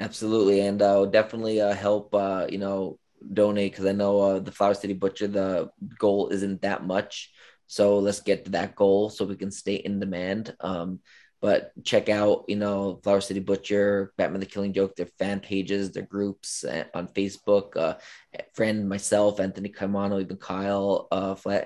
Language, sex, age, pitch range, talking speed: English, male, 20-39, 95-100 Hz, 180 wpm